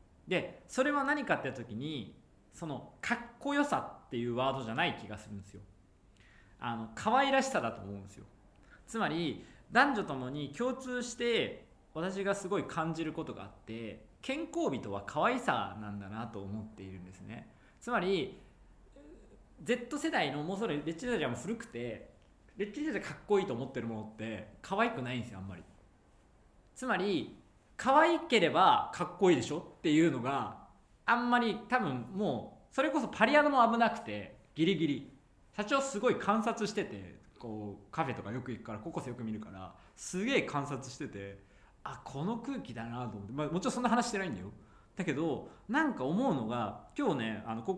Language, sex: Japanese, male